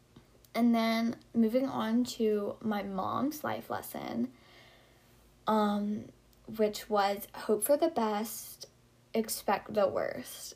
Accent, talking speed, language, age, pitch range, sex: American, 110 wpm, English, 10-29, 195-230 Hz, female